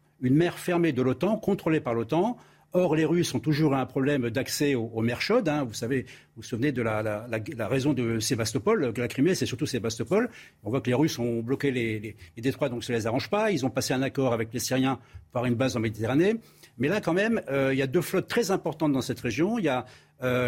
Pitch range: 125-165 Hz